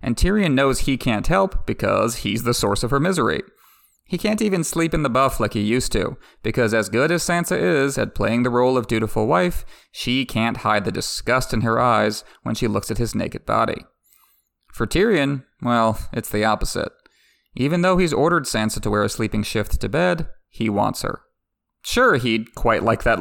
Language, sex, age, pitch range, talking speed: English, male, 30-49, 110-170 Hz, 200 wpm